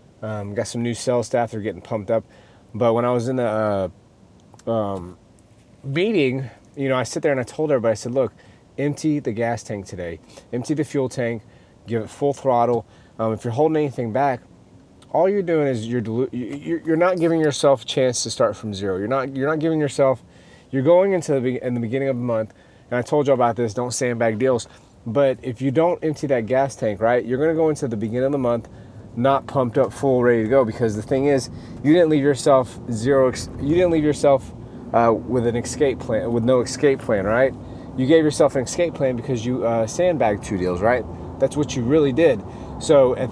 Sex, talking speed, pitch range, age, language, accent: male, 225 wpm, 115-140 Hz, 30-49, English, American